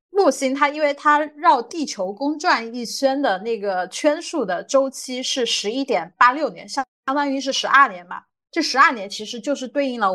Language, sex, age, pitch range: Chinese, female, 20-39, 200-265 Hz